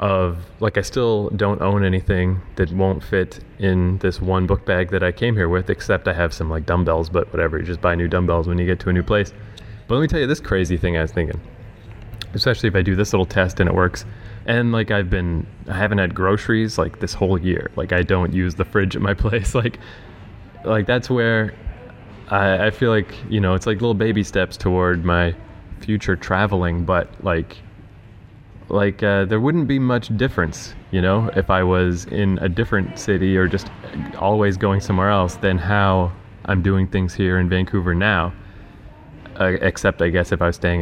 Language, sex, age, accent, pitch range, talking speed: English, male, 20-39, American, 90-105 Hz, 210 wpm